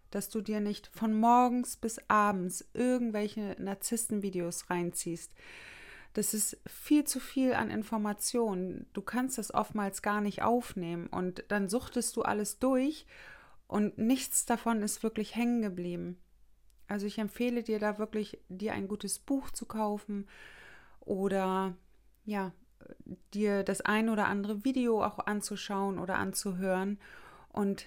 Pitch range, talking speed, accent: 185-215 Hz, 135 wpm, German